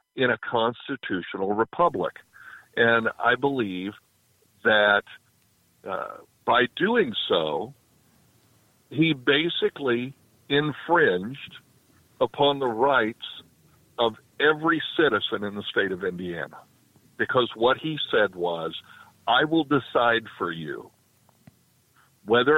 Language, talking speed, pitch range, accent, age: English, 100 wpm, 110-145 Hz, American, 50-69